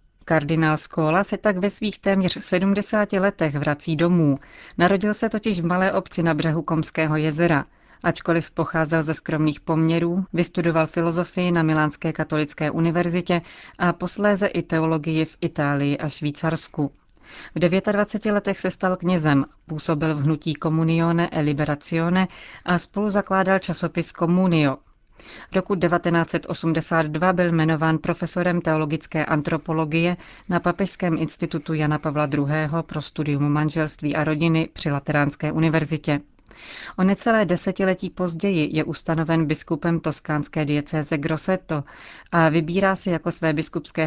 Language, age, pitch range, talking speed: Czech, 30-49, 155-175 Hz, 130 wpm